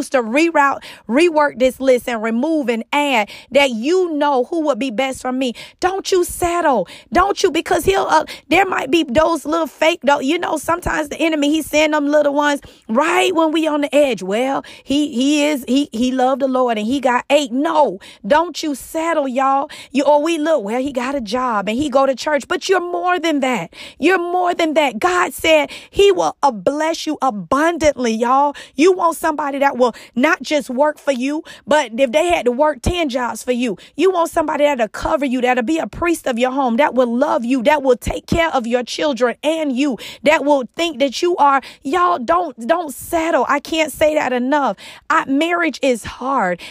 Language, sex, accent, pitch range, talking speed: English, female, American, 260-320 Hz, 210 wpm